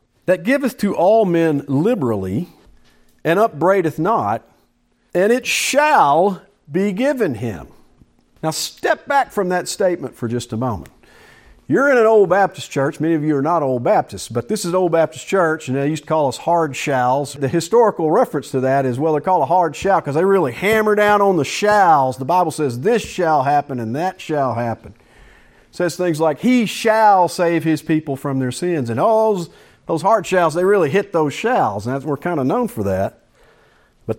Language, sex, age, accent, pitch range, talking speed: English, male, 50-69, American, 140-220 Hz, 195 wpm